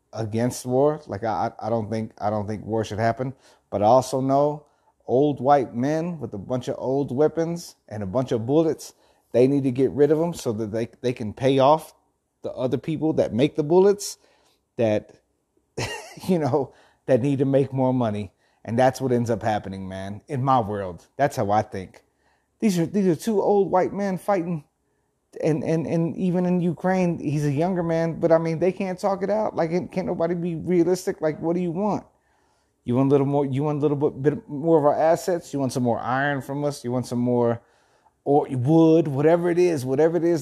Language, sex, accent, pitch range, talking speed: English, male, American, 125-165 Hz, 215 wpm